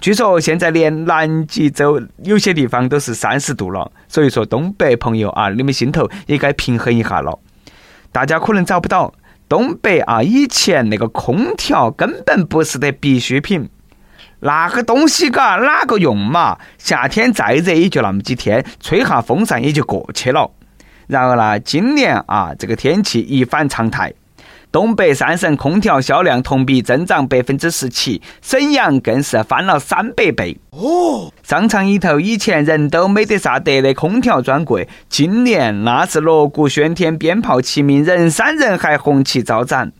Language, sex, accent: Chinese, male, native